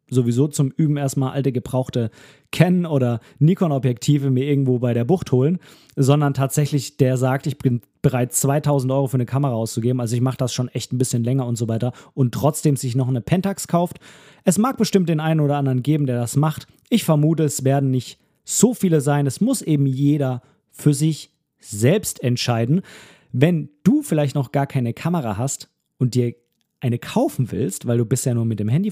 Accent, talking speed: German, 195 wpm